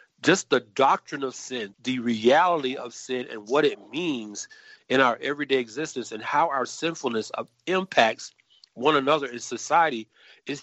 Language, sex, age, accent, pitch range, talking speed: English, male, 40-59, American, 120-170 Hz, 160 wpm